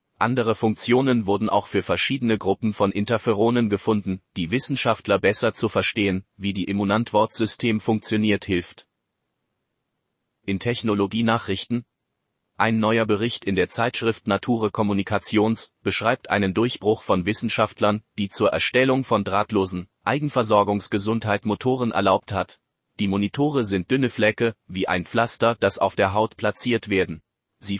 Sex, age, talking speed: male, 30-49, 125 wpm